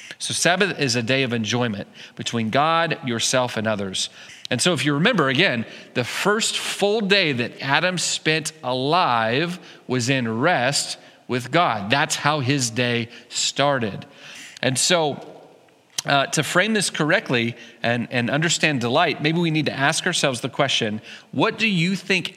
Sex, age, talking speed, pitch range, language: male, 40-59, 160 wpm, 125-170 Hz, English